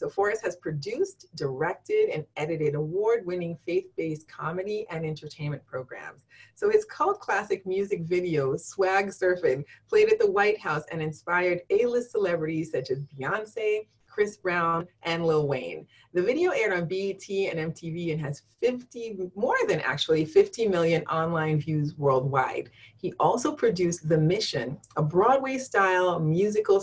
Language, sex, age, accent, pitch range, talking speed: English, female, 30-49, American, 155-245 Hz, 145 wpm